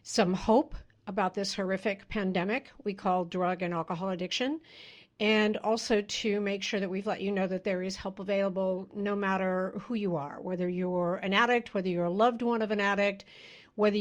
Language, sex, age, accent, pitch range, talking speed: English, female, 50-69, American, 185-220 Hz, 195 wpm